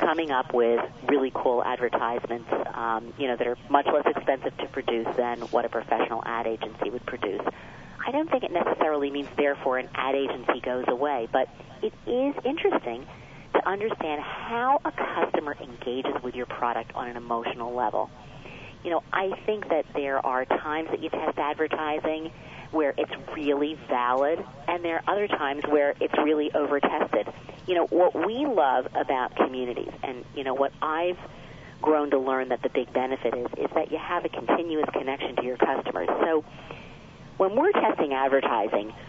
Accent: American